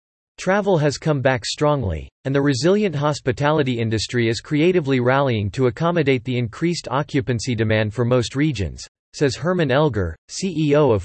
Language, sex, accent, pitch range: English, male, American, 115-155 Hz